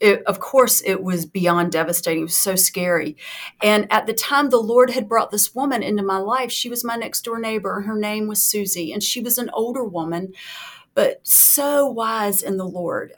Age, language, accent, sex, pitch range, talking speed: 40-59, English, American, female, 185-245 Hz, 215 wpm